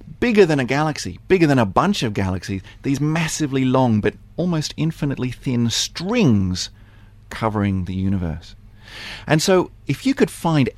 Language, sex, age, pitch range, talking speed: English, male, 40-59, 95-125 Hz, 150 wpm